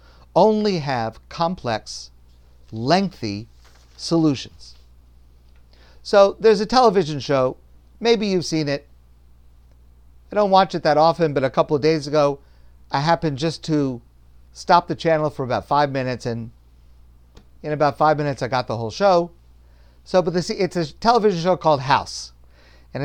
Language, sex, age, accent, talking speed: English, male, 50-69, American, 145 wpm